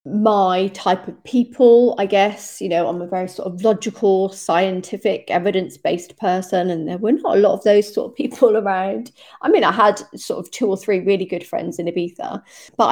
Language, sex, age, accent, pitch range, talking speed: English, female, 40-59, British, 190-245 Hz, 210 wpm